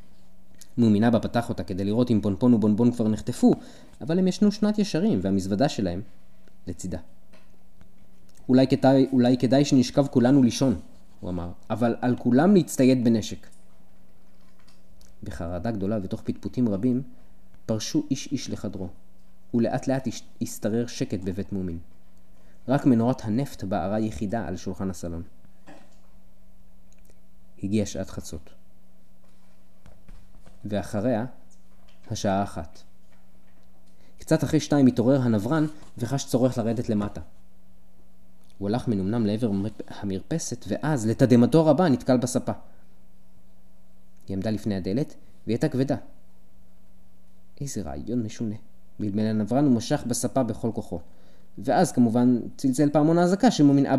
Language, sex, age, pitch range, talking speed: Hebrew, male, 20-39, 95-125 Hz, 115 wpm